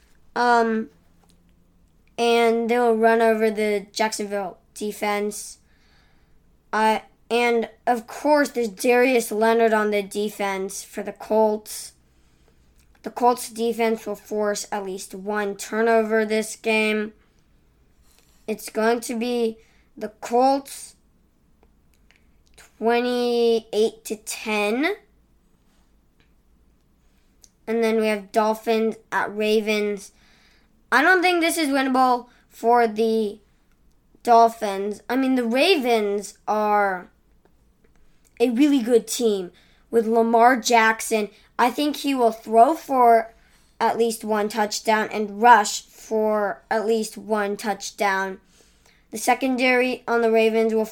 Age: 20-39